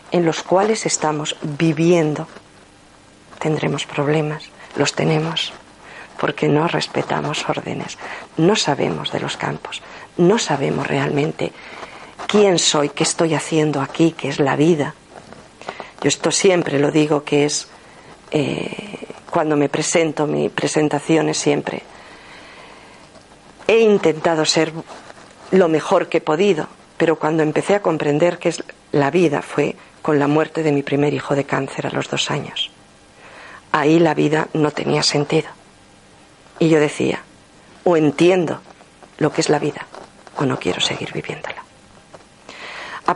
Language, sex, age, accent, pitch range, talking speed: Spanish, female, 40-59, Spanish, 145-165 Hz, 135 wpm